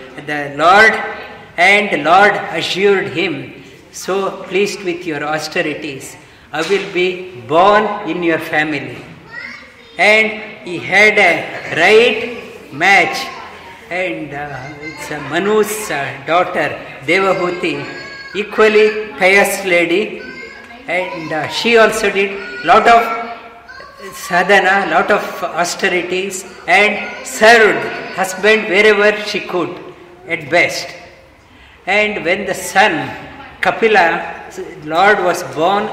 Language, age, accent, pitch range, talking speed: English, 50-69, Indian, 160-205 Hz, 100 wpm